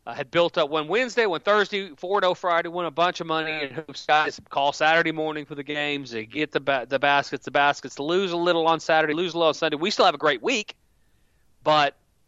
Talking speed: 235 wpm